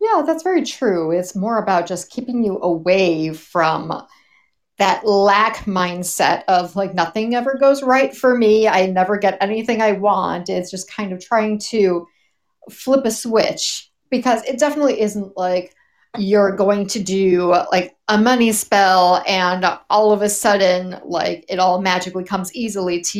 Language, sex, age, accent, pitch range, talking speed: English, female, 40-59, American, 185-235 Hz, 165 wpm